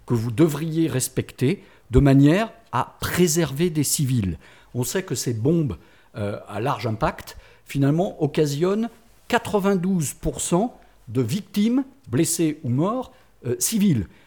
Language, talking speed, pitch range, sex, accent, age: French, 120 wpm, 120-175 Hz, male, French, 50-69